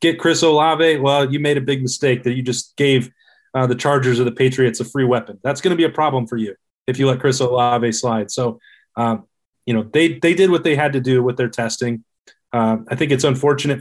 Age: 20-39